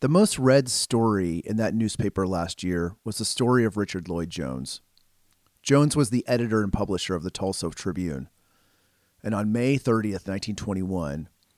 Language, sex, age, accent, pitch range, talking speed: English, male, 30-49, American, 90-115 Hz, 155 wpm